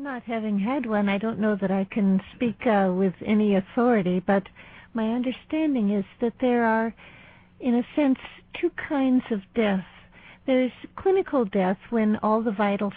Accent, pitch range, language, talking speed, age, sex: American, 200-250 Hz, English, 165 wpm, 60-79, female